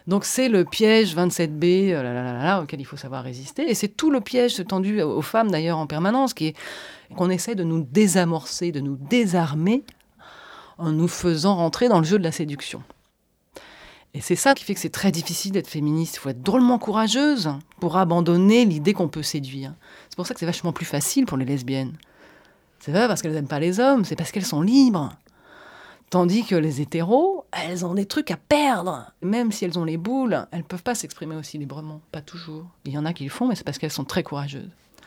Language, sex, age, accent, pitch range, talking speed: French, female, 30-49, French, 150-200 Hz, 220 wpm